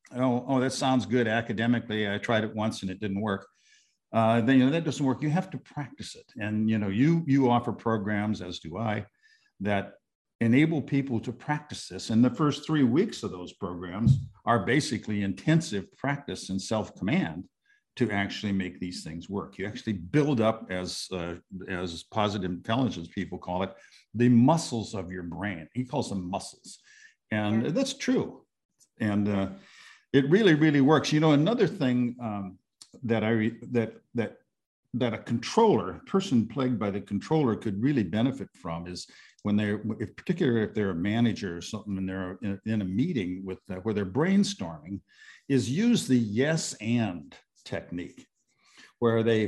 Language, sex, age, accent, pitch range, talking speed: English, male, 50-69, American, 100-135 Hz, 175 wpm